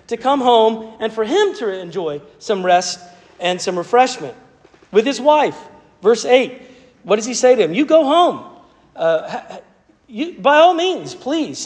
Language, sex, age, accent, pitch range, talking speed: English, male, 40-59, American, 215-285 Hz, 170 wpm